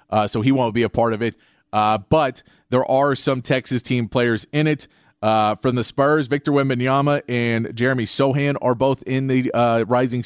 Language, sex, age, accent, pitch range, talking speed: English, male, 30-49, American, 115-145 Hz, 200 wpm